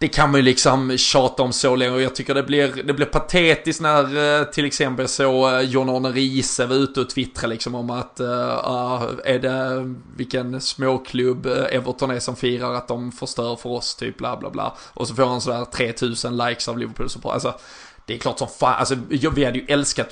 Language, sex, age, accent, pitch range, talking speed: Swedish, male, 20-39, native, 125-135 Hz, 205 wpm